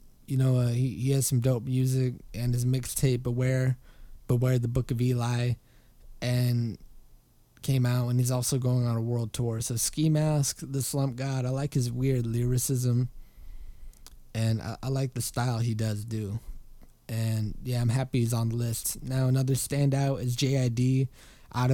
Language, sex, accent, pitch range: English, male, American, 120-130 Hz